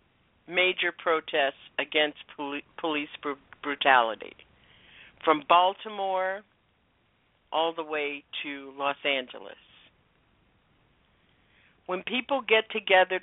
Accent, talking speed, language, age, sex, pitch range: American, 75 wpm, English, 50-69, female, 150-210 Hz